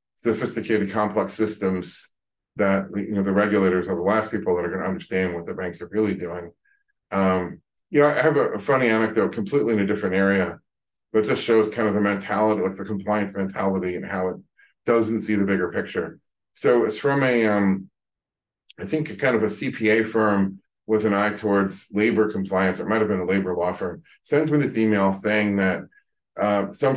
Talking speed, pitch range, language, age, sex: 200 wpm, 95-110 Hz, English, 40-59, male